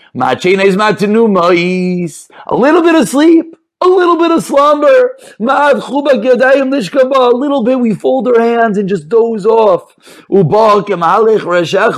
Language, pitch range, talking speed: English, 195-285 Hz, 110 wpm